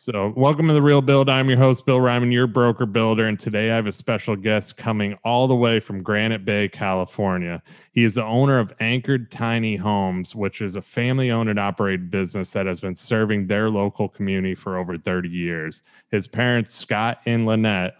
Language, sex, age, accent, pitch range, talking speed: English, male, 30-49, American, 100-115 Hz, 205 wpm